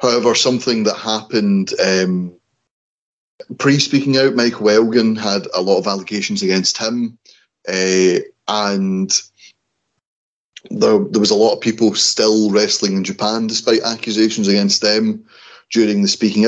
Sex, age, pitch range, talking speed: male, 30-49, 105-115 Hz, 130 wpm